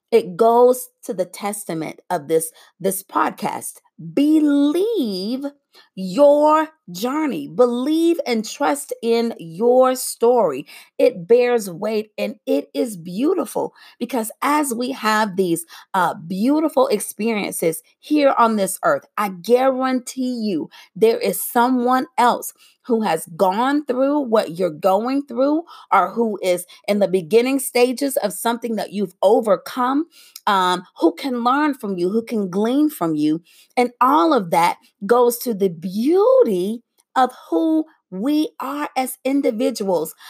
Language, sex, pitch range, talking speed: English, female, 195-265 Hz, 135 wpm